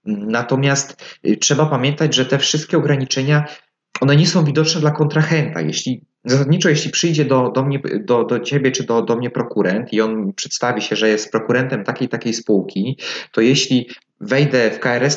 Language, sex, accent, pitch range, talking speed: Polish, male, native, 115-135 Hz, 170 wpm